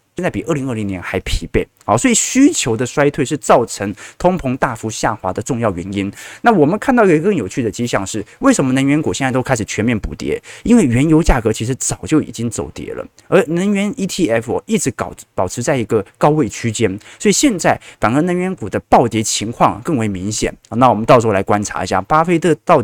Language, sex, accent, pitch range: Chinese, male, native, 105-155 Hz